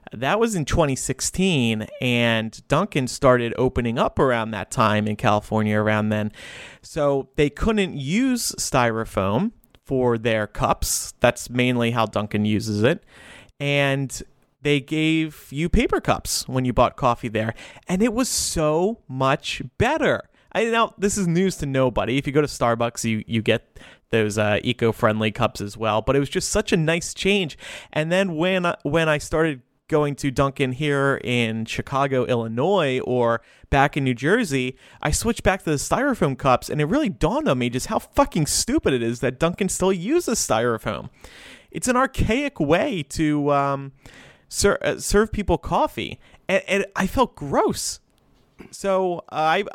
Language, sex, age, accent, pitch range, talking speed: English, male, 30-49, American, 120-175 Hz, 170 wpm